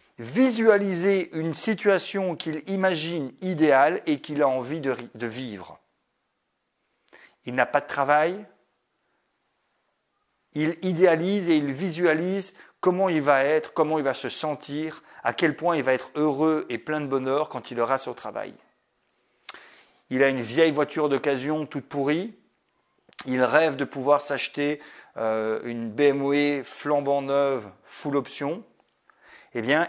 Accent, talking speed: French, 140 wpm